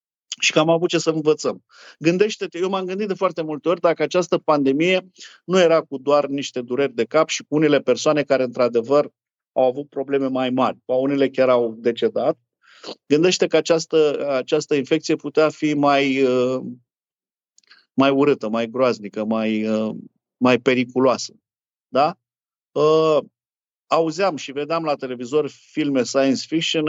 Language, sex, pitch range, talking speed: Romanian, male, 125-160 Hz, 145 wpm